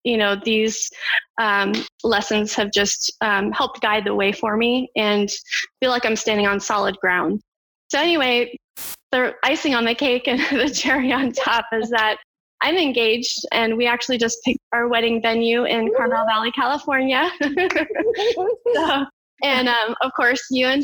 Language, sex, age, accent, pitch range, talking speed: English, female, 20-39, American, 220-255 Hz, 160 wpm